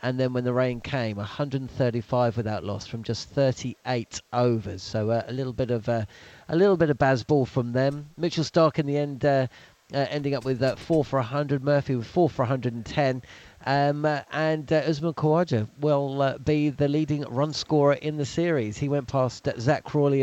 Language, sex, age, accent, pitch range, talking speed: English, male, 40-59, British, 125-150 Hz, 205 wpm